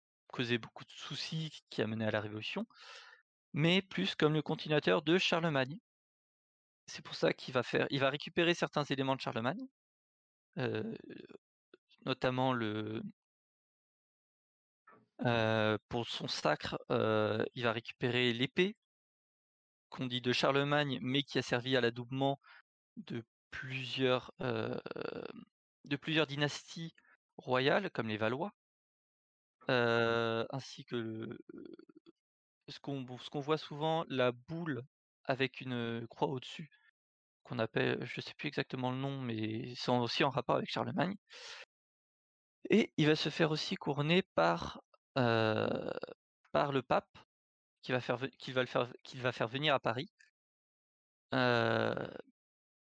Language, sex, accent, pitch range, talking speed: French, male, French, 120-155 Hz, 135 wpm